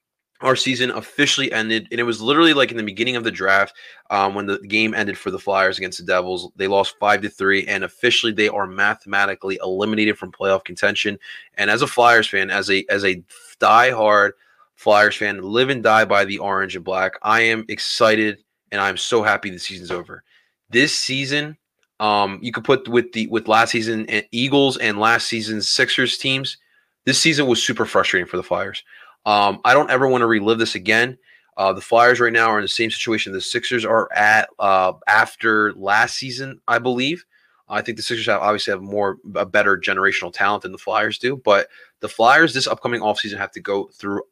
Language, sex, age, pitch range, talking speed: English, male, 20-39, 100-120 Hz, 205 wpm